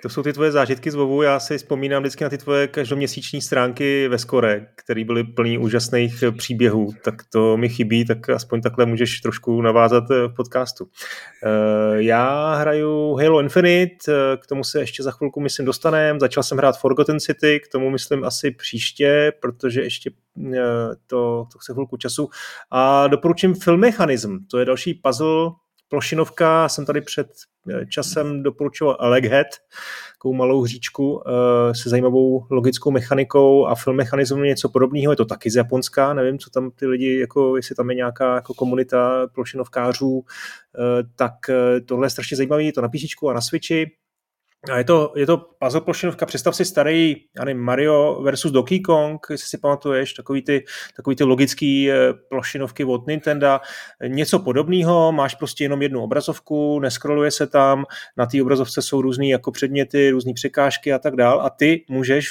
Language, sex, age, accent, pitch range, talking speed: Czech, male, 30-49, native, 125-150 Hz, 160 wpm